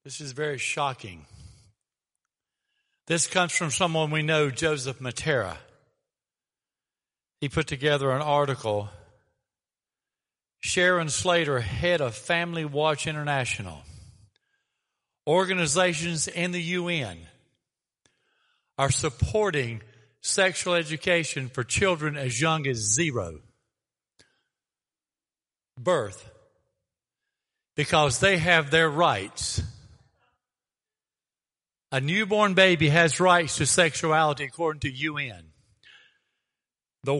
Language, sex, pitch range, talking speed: English, male, 130-180 Hz, 90 wpm